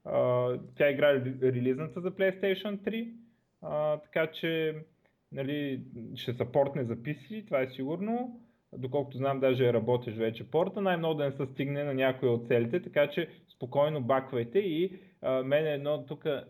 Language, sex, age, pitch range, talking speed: Bulgarian, male, 20-39, 120-145 Hz, 160 wpm